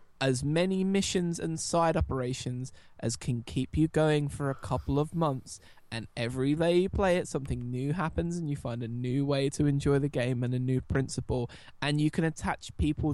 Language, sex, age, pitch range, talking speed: English, male, 20-39, 120-145 Hz, 200 wpm